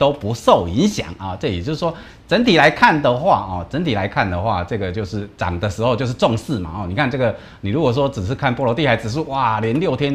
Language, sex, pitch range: Chinese, male, 95-120 Hz